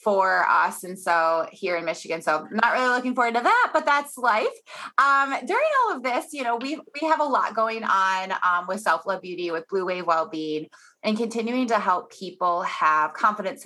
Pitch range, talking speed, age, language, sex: 175-230 Hz, 205 wpm, 20-39, English, female